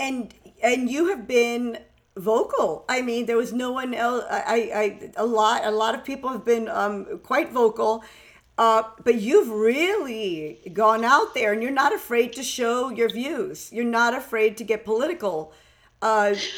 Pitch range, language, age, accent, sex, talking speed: 220-275 Hz, English, 50-69, American, female, 175 wpm